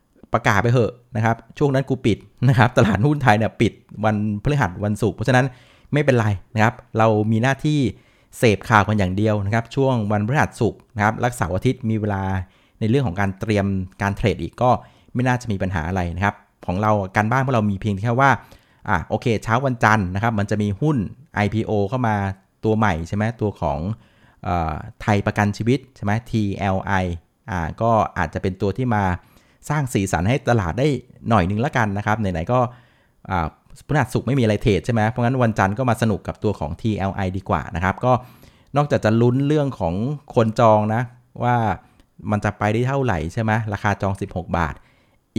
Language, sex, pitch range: Thai, male, 100-125 Hz